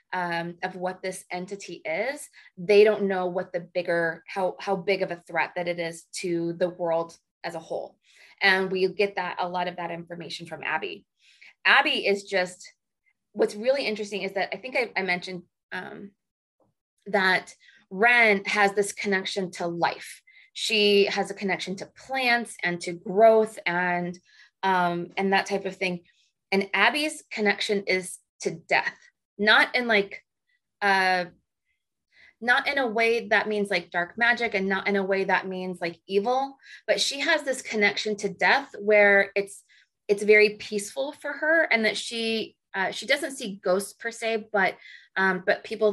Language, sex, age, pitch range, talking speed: English, female, 20-39, 185-215 Hz, 170 wpm